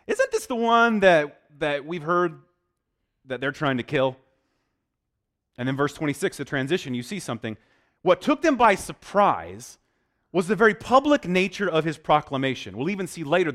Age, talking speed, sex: 30-49, 175 wpm, male